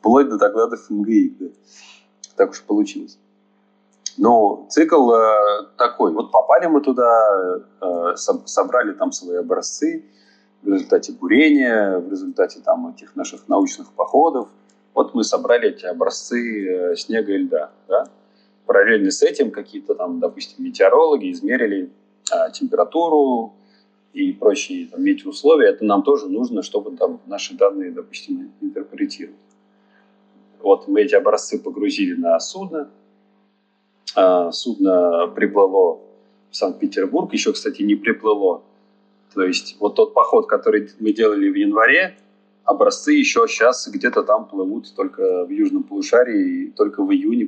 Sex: male